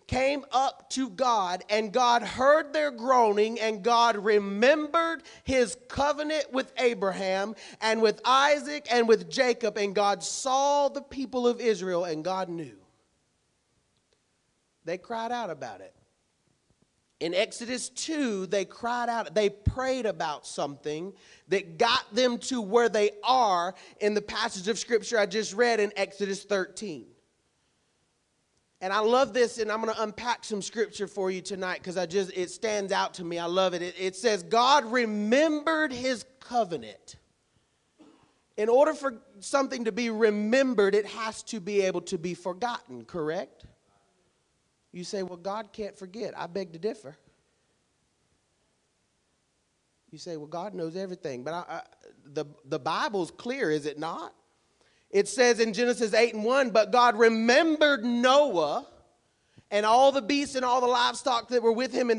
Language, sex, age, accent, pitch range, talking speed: English, male, 40-59, American, 195-250 Hz, 155 wpm